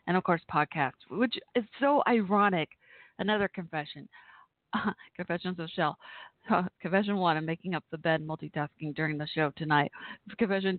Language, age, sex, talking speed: English, 30-49, female, 145 wpm